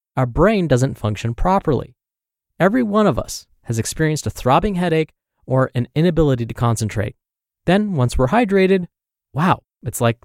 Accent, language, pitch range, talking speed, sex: American, English, 115-165 Hz, 150 wpm, male